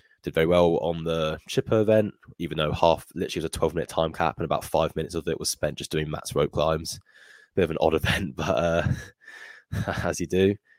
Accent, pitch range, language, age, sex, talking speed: British, 80-100 Hz, English, 10-29, male, 220 wpm